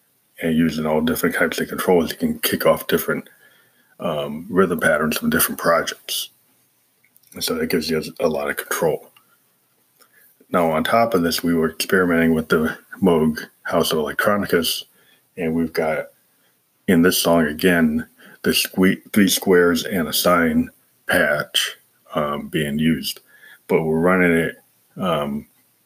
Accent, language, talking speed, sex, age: American, English, 145 wpm, male, 30-49